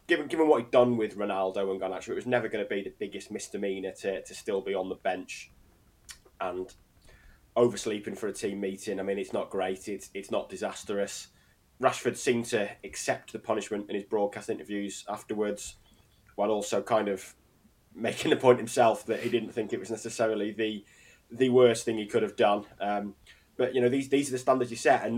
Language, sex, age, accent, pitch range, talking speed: English, male, 20-39, British, 95-120 Hz, 205 wpm